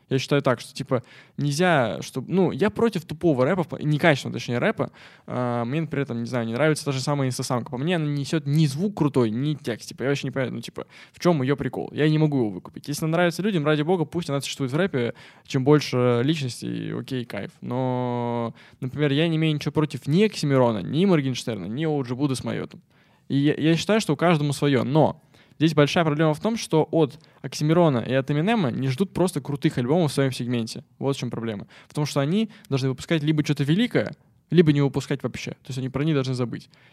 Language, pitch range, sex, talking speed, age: Russian, 130-160 Hz, male, 225 wpm, 20-39